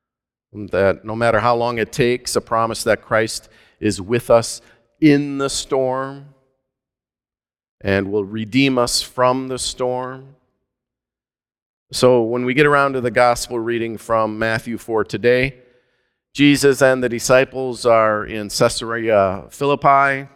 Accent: American